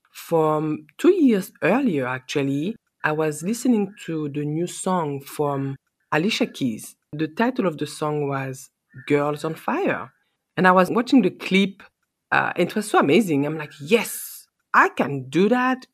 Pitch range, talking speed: 150-200 Hz, 160 wpm